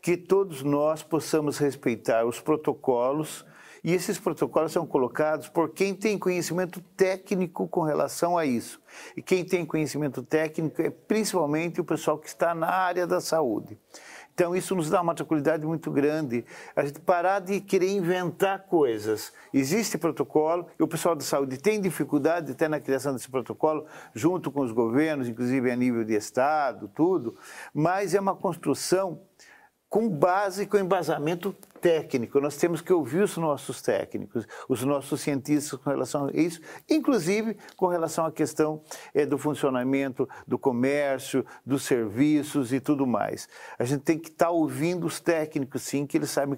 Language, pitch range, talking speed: Portuguese, 145-185 Hz, 160 wpm